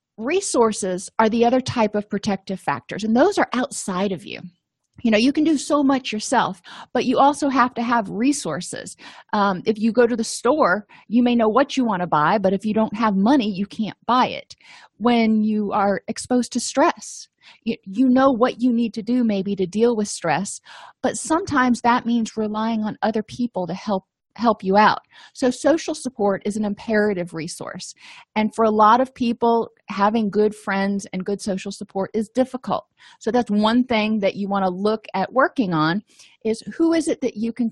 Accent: American